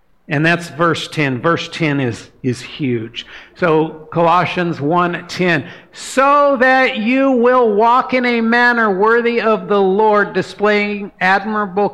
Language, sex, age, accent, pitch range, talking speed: English, male, 50-69, American, 175-220 Hz, 130 wpm